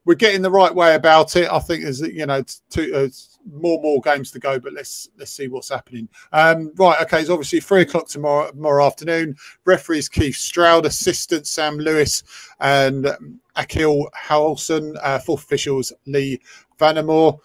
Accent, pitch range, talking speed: British, 140-165 Hz, 170 wpm